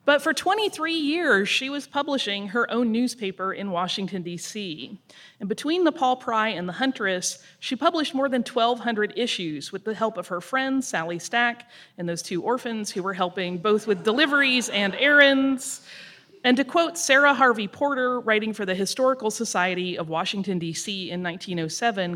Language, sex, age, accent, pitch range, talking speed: English, female, 30-49, American, 190-255 Hz, 170 wpm